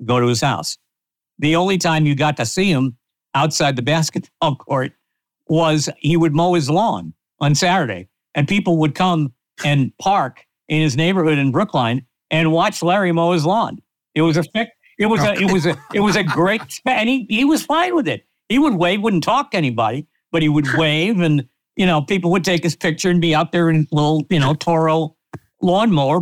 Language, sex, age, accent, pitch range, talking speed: English, male, 60-79, American, 135-175 Hz, 215 wpm